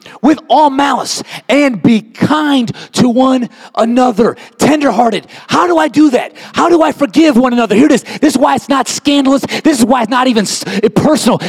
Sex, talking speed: male, 195 wpm